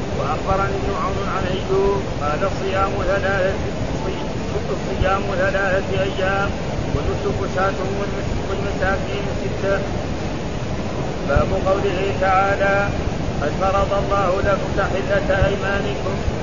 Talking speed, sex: 85 wpm, male